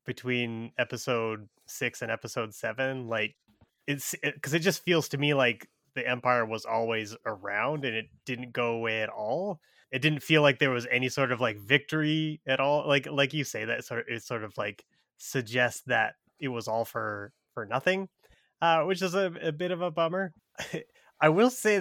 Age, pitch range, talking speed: 20-39, 115-150 Hz, 200 wpm